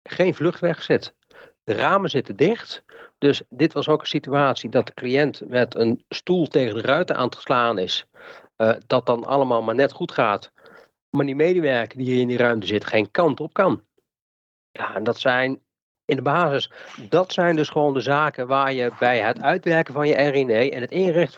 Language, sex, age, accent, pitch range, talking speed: Dutch, male, 40-59, Dutch, 120-150 Hz, 200 wpm